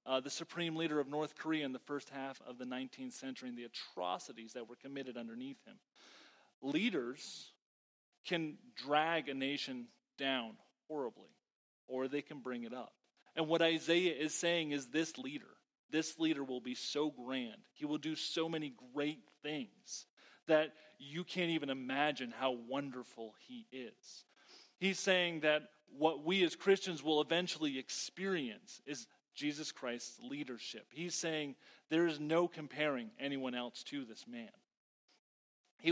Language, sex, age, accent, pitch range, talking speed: English, male, 30-49, American, 130-175 Hz, 155 wpm